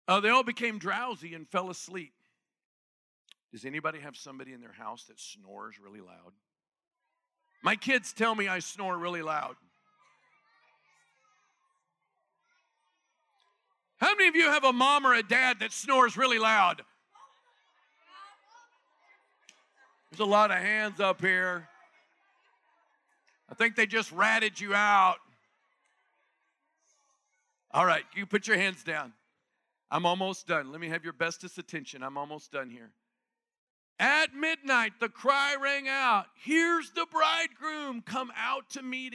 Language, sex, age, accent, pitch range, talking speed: English, male, 50-69, American, 175-265 Hz, 135 wpm